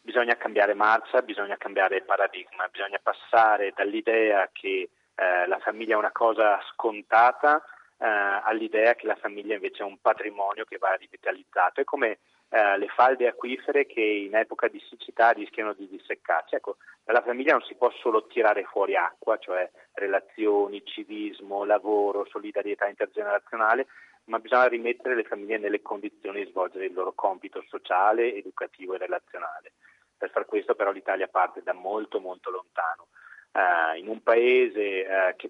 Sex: male